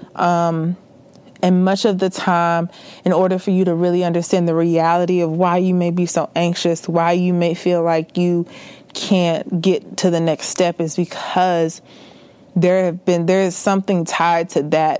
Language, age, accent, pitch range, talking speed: English, 20-39, American, 160-185 Hz, 180 wpm